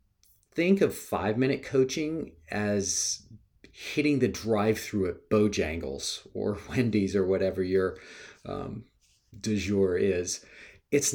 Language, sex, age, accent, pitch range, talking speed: English, male, 40-59, American, 95-120 Hz, 115 wpm